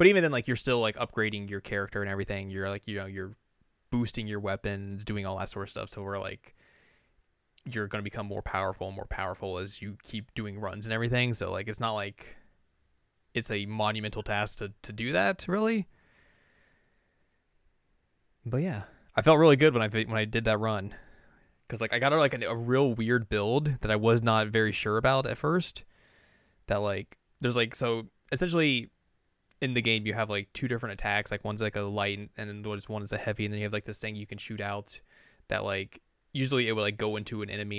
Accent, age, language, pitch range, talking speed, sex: American, 20-39, English, 100-115 Hz, 220 wpm, male